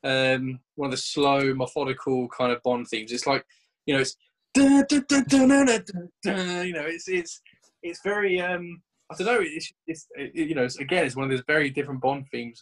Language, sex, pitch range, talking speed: English, male, 135-185 Hz, 165 wpm